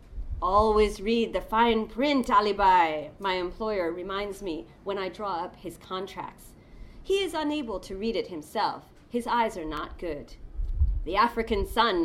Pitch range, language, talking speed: 170-275 Hz, English, 155 wpm